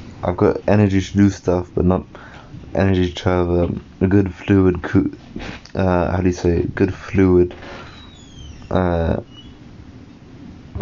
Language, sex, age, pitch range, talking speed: English, male, 20-39, 85-100 Hz, 140 wpm